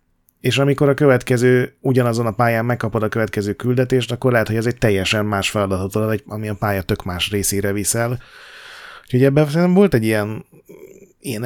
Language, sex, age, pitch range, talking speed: Hungarian, male, 30-49, 105-125 Hz, 170 wpm